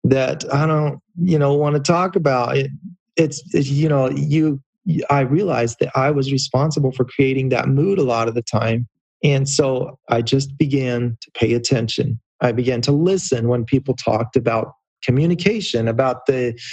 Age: 30-49